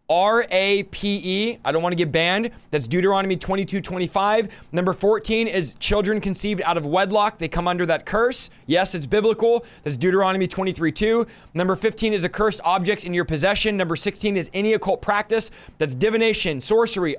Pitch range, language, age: 175-215 Hz, English, 20-39